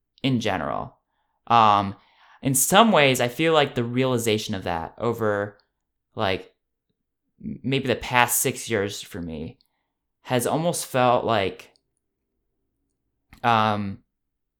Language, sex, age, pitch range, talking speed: English, male, 20-39, 105-130 Hz, 110 wpm